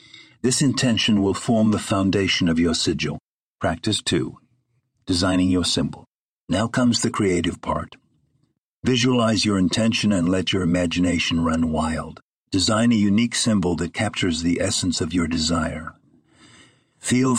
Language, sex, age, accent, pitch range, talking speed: English, male, 50-69, American, 90-120 Hz, 140 wpm